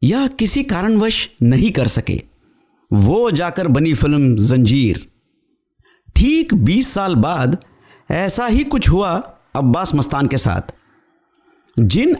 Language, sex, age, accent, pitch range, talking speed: Hindi, male, 50-69, native, 130-220 Hz, 120 wpm